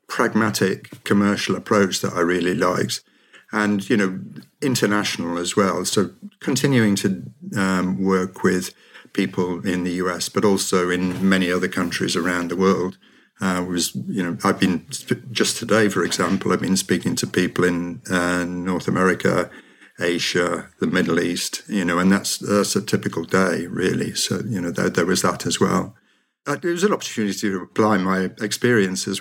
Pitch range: 95-105 Hz